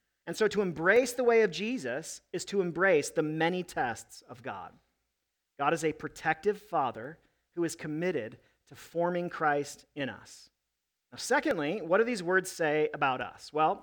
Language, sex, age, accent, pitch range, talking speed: English, male, 40-59, American, 155-200 Hz, 170 wpm